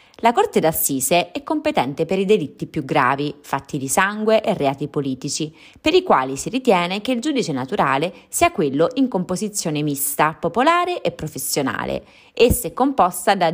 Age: 20-39